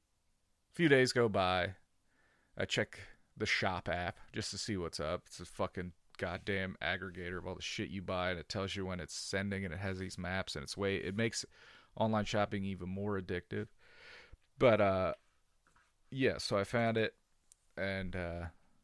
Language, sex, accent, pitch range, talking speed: English, male, American, 90-130 Hz, 180 wpm